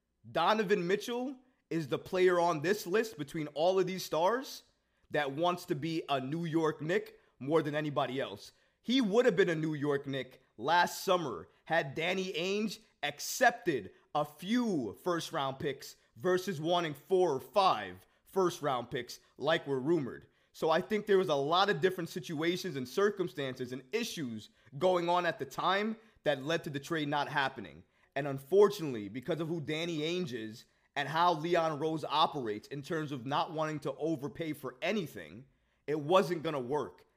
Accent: American